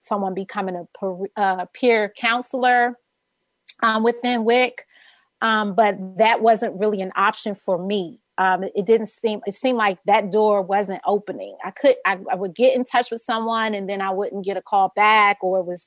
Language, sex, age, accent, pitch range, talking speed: English, female, 30-49, American, 195-230 Hz, 185 wpm